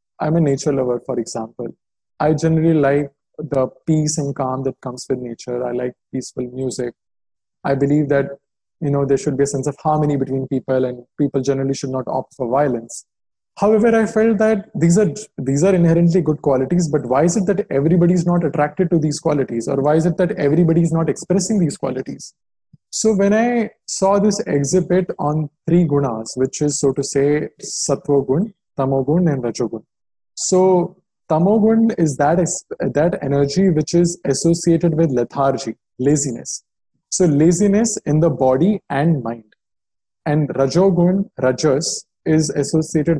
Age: 20-39